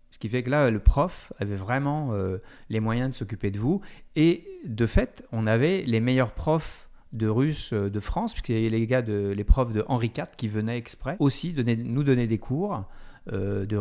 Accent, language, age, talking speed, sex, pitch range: French, French, 40-59, 215 wpm, male, 110-130 Hz